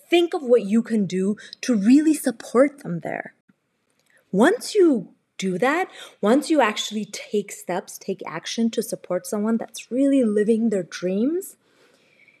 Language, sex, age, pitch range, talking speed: English, female, 20-39, 190-275 Hz, 145 wpm